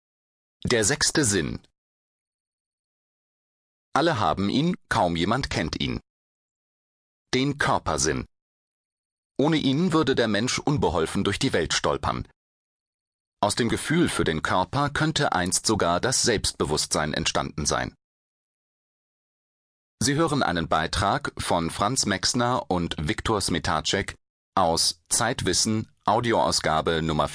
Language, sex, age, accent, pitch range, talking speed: German, male, 40-59, German, 85-120 Hz, 105 wpm